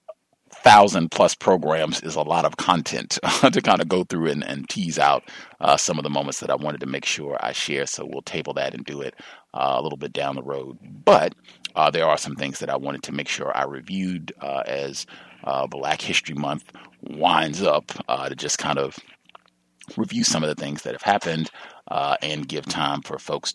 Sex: male